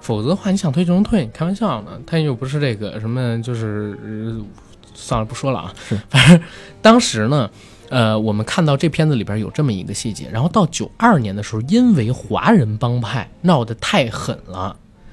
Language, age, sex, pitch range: Chinese, 20-39, male, 110-155 Hz